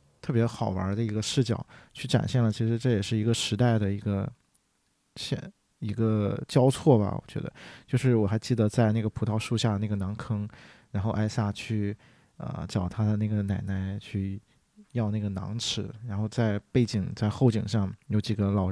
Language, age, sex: Chinese, 20-39, male